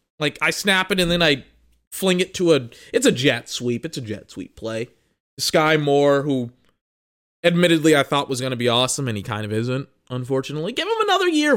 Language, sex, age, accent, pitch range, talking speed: English, male, 20-39, American, 140-195 Hz, 215 wpm